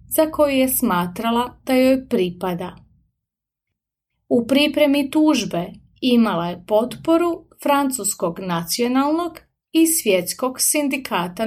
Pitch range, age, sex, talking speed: 200-275 Hz, 30-49, female, 95 wpm